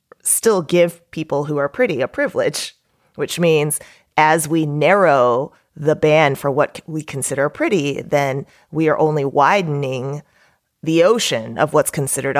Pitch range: 145-190 Hz